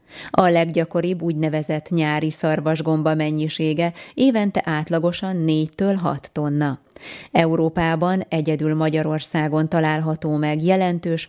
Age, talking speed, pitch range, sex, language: 20-39, 85 wpm, 150-175 Hz, female, Hungarian